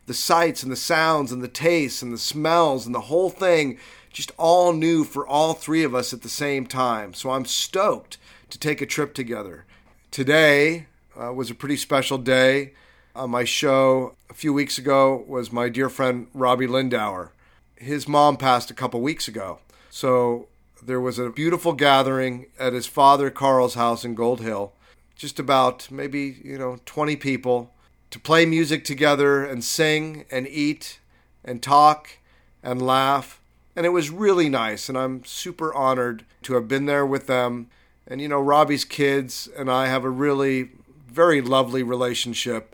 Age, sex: 40-59, male